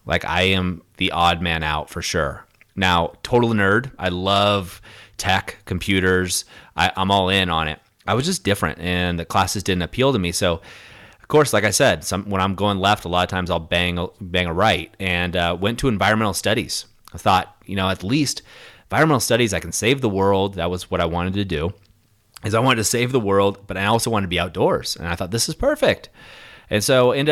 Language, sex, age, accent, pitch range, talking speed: English, male, 30-49, American, 90-110 Hz, 220 wpm